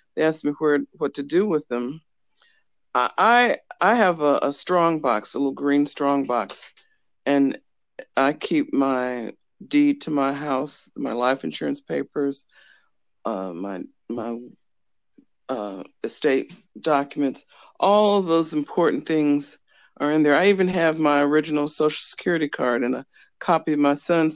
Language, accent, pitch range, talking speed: English, American, 140-190 Hz, 150 wpm